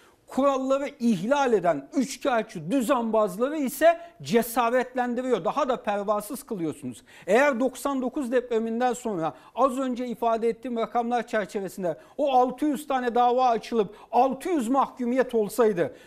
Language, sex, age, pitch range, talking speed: Turkish, male, 60-79, 215-270 Hz, 110 wpm